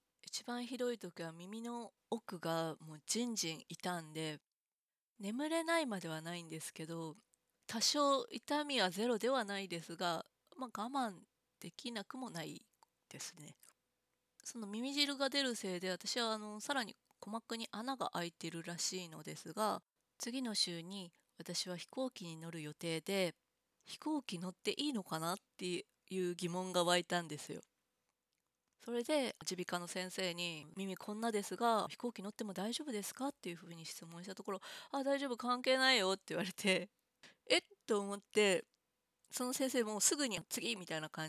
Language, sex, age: Japanese, female, 20-39